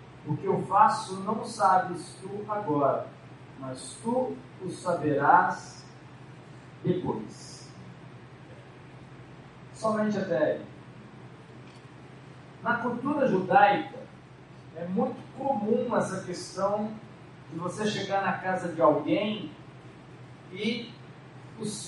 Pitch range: 145-215 Hz